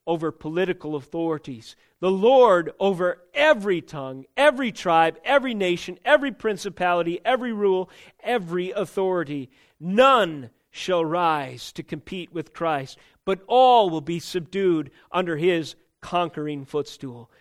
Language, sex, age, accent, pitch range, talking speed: English, male, 40-59, American, 160-210 Hz, 115 wpm